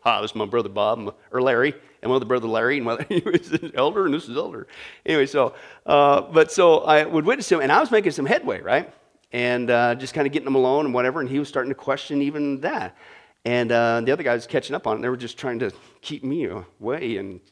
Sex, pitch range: male, 130-210 Hz